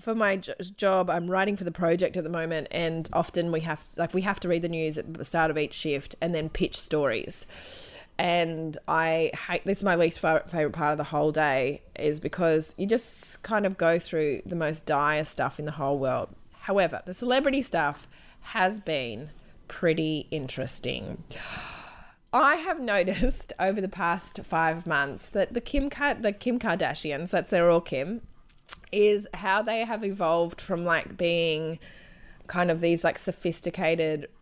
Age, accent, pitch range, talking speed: 20-39, Australian, 155-190 Hz, 180 wpm